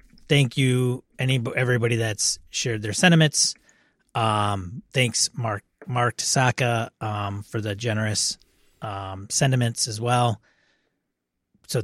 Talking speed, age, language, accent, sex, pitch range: 110 wpm, 30-49, English, American, male, 110-135 Hz